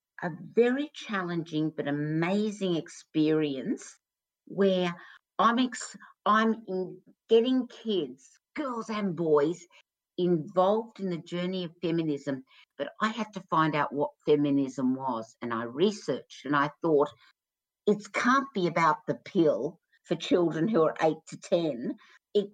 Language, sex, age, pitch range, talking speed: English, female, 50-69, 150-200 Hz, 135 wpm